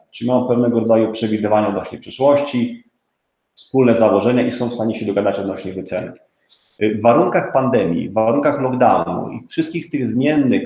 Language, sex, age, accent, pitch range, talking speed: Polish, male, 30-49, native, 115-145 Hz, 150 wpm